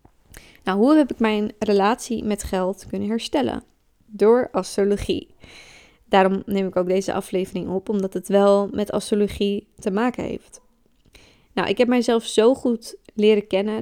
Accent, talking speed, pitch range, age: Dutch, 150 wpm, 195-225 Hz, 20-39